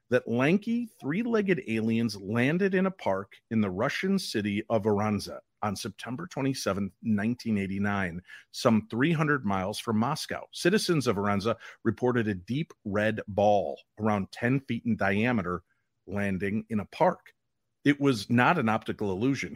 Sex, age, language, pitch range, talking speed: male, 40-59, English, 100-130 Hz, 145 wpm